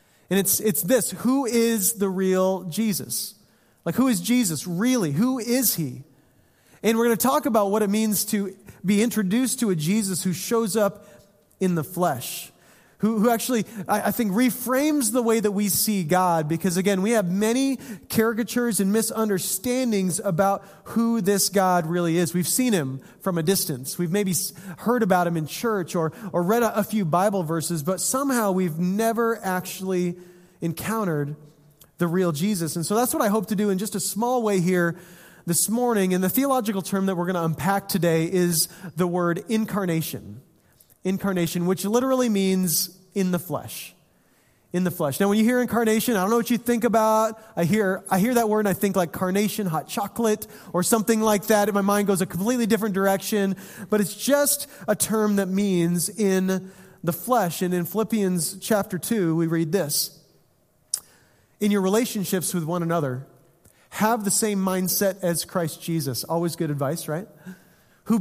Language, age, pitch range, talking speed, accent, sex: English, 30-49, 175-220 Hz, 180 wpm, American, male